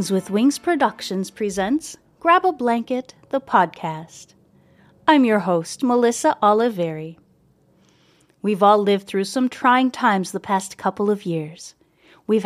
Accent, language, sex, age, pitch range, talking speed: American, English, female, 30-49, 195-270 Hz, 130 wpm